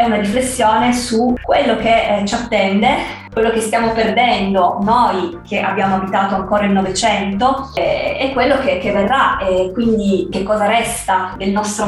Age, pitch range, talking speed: 20-39, 190-215 Hz, 150 wpm